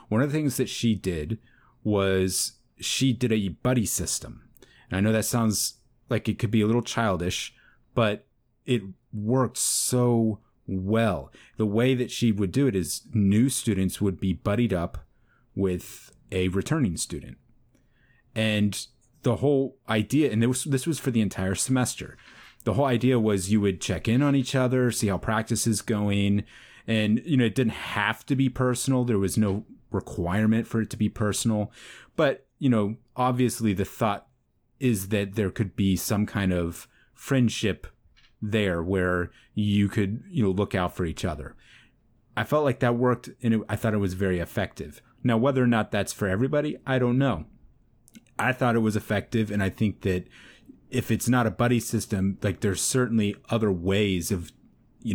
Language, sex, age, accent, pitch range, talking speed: English, male, 30-49, American, 100-125 Hz, 175 wpm